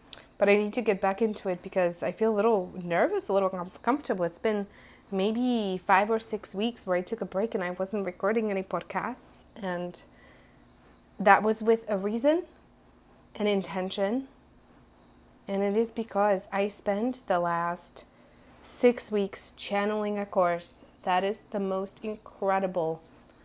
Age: 20-39